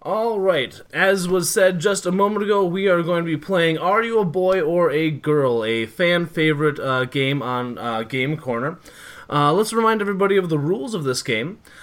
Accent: American